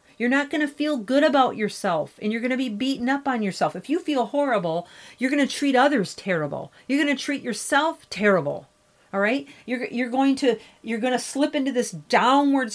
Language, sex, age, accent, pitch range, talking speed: English, female, 40-59, American, 200-270 Hz, 215 wpm